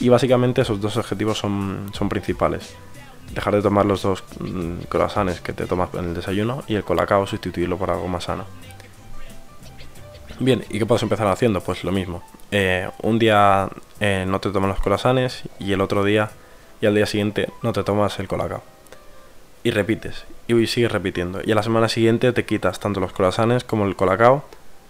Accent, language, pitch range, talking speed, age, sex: Spanish, Spanish, 100-115 Hz, 185 wpm, 20-39, male